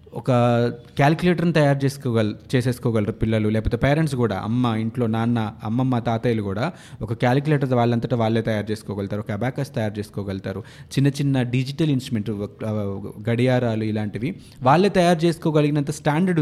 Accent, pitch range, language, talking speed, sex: native, 115-150 Hz, Telugu, 130 wpm, male